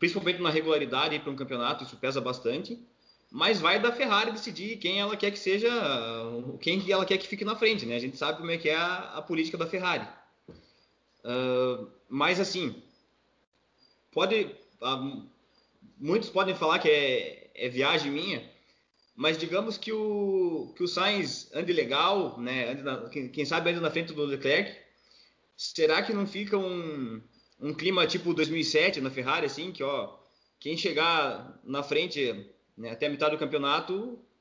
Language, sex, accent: Portuguese, male, Brazilian